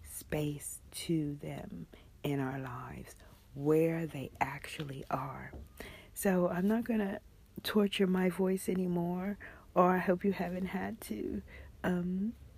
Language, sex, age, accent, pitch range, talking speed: English, female, 50-69, American, 145-185 Hz, 125 wpm